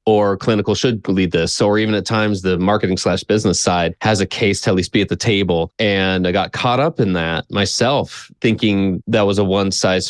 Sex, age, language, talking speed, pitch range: male, 20-39, English, 225 wpm, 95-115 Hz